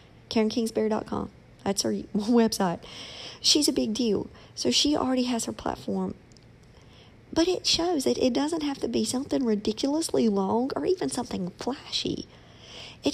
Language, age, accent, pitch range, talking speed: English, 50-69, American, 185-245 Hz, 140 wpm